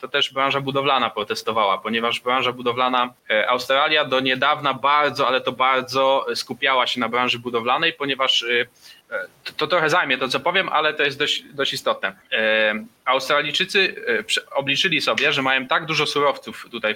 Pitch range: 125-150 Hz